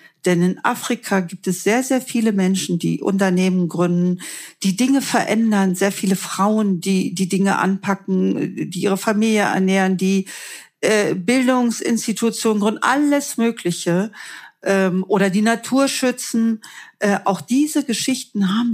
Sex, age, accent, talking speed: female, 50-69, German, 135 wpm